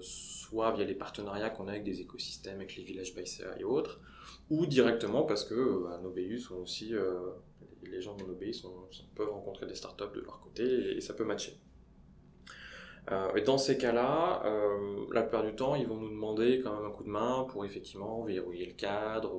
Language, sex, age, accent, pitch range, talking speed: French, male, 20-39, French, 95-125 Hz, 205 wpm